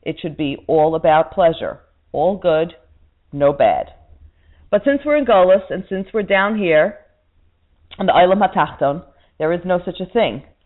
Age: 40-59